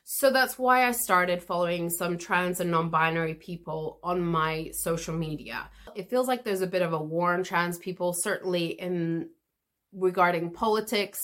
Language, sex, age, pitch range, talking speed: English, female, 30-49, 175-230 Hz, 165 wpm